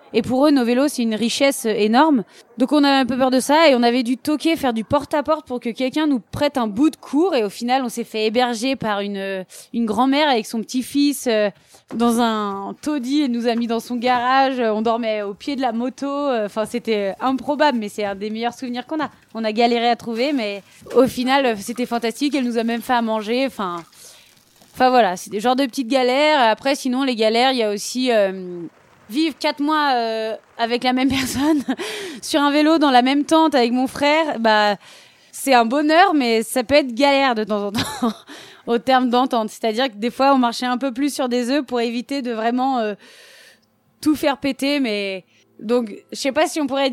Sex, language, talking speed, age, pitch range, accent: female, French, 225 wpm, 20-39, 225-275 Hz, French